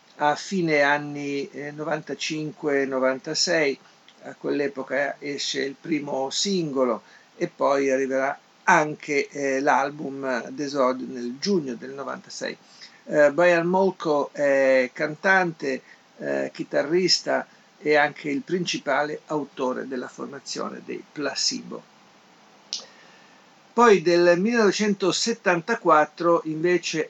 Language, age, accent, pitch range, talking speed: Italian, 50-69, native, 135-170 Hz, 90 wpm